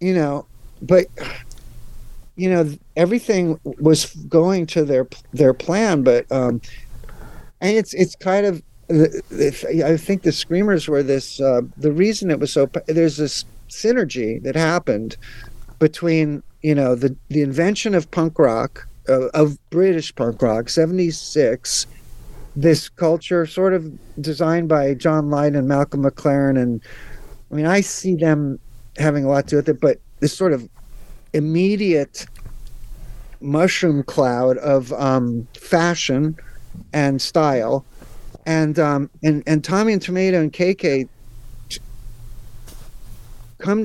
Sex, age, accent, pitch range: male, 50-69, American, 125-165 Hz